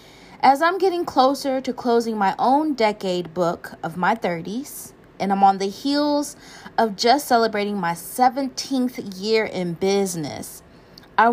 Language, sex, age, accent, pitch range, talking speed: English, female, 30-49, American, 180-245 Hz, 145 wpm